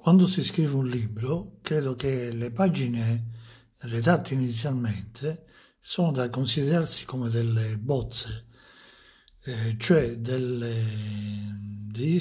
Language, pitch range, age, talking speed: Italian, 115-145 Hz, 60-79, 95 wpm